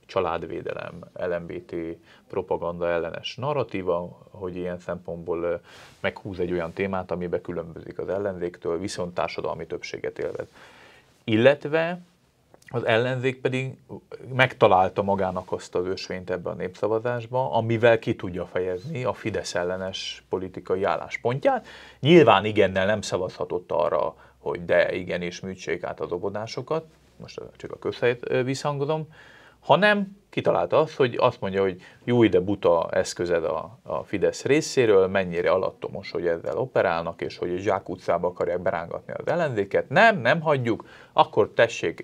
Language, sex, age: Hungarian, male, 30-49